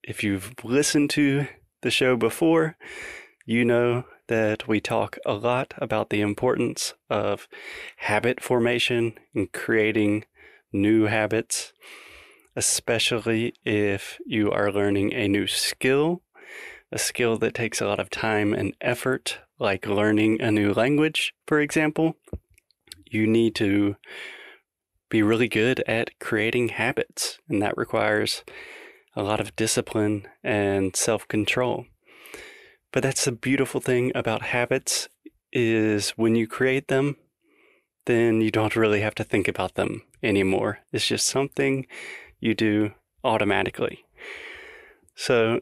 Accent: American